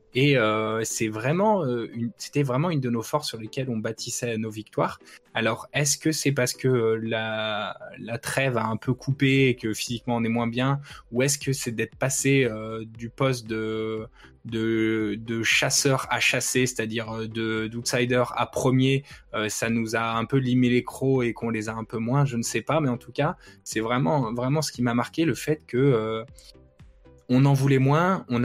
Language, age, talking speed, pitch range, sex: French, 20-39, 200 wpm, 115-135 Hz, male